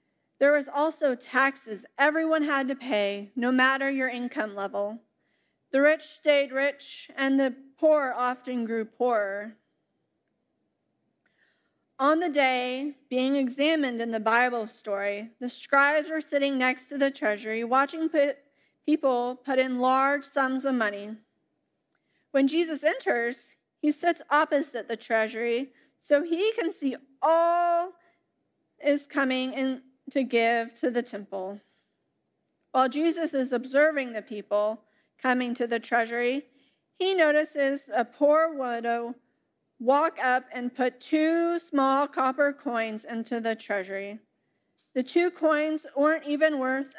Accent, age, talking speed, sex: American, 30-49, 130 wpm, female